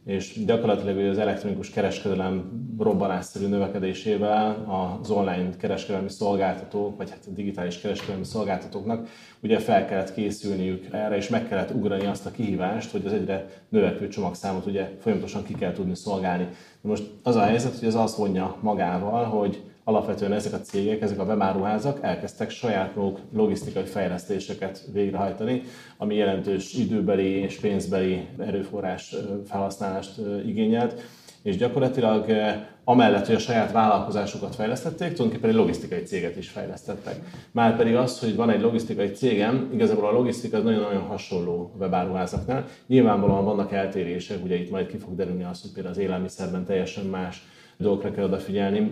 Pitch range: 95-110 Hz